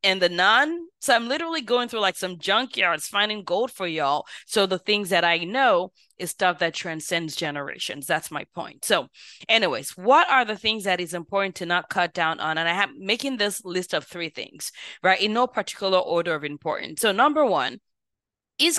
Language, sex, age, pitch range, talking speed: English, female, 20-39, 175-235 Hz, 200 wpm